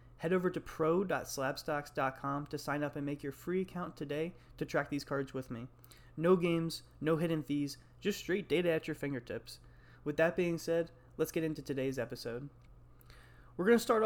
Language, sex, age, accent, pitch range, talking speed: English, male, 20-39, American, 135-175 Hz, 185 wpm